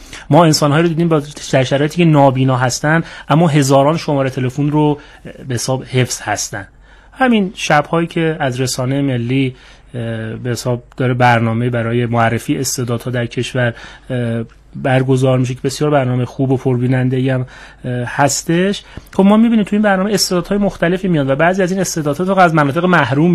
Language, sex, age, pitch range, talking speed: Persian, male, 30-49, 125-155 Hz, 155 wpm